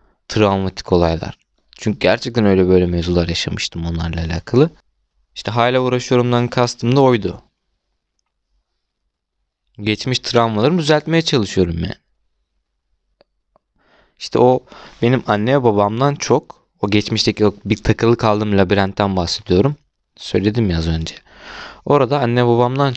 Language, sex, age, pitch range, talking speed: Turkish, male, 20-39, 95-130 Hz, 110 wpm